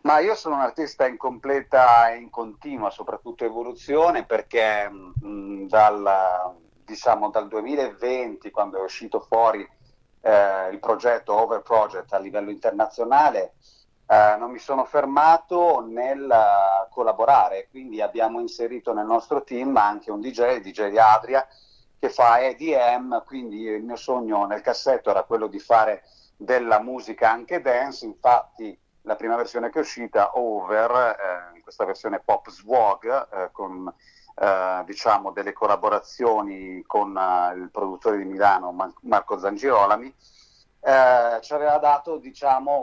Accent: native